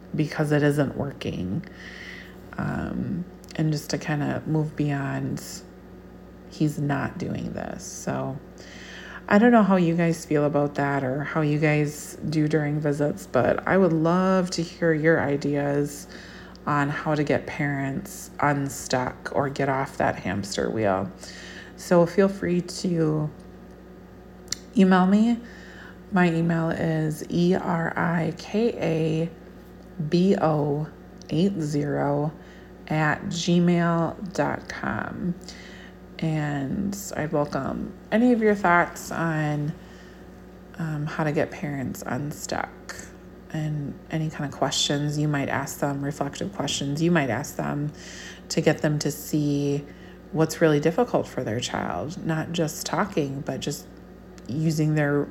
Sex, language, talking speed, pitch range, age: female, English, 125 wpm, 145-170 Hz, 30-49